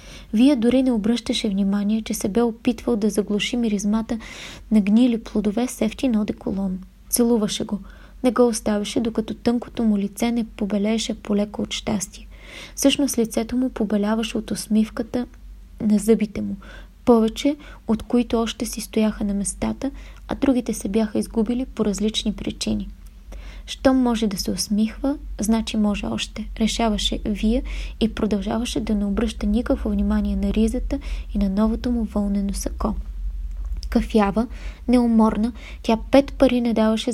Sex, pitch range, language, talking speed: female, 210-240 Hz, Bulgarian, 145 wpm